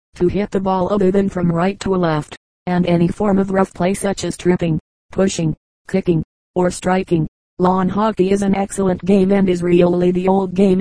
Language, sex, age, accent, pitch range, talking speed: English, female, 40-59, American, 180-195 Hz, 200 wpm